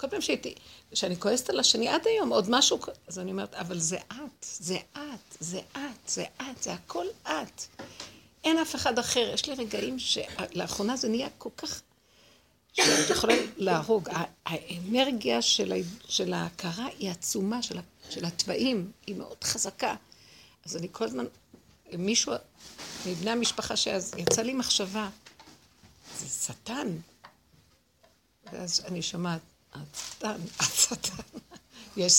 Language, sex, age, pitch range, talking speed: Hebrew, female, 60-79, 180-245 Hz, 130 wpm